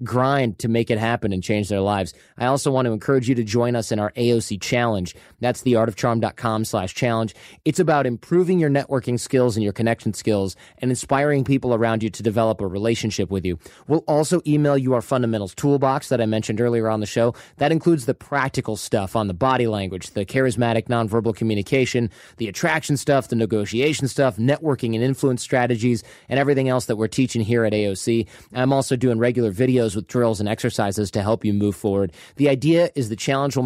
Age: 30-49